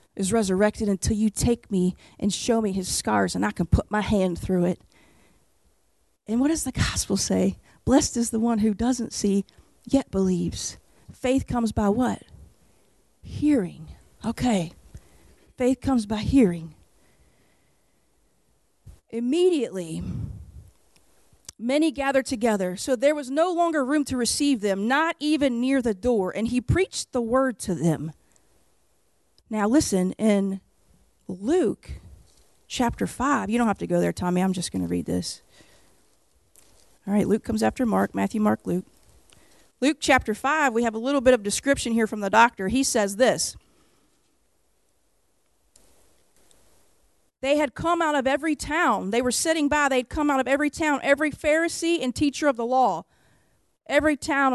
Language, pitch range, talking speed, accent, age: English, 185-280 Hz, 155 wpm, American, 40-59